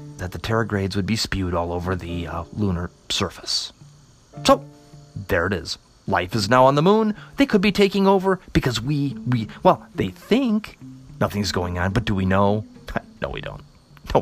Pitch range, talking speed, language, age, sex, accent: 100-150 Hz, 185 wpm, English, 30-49, male, American